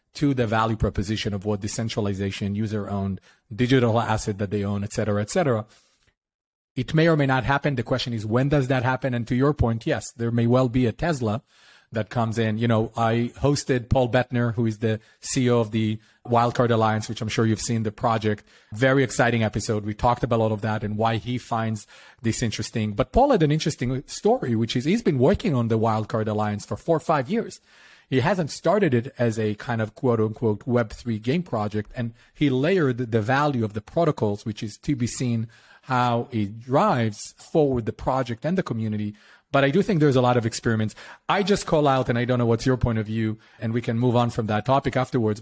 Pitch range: 110-130 Hz